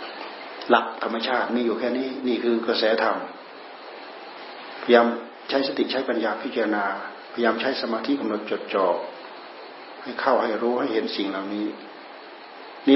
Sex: male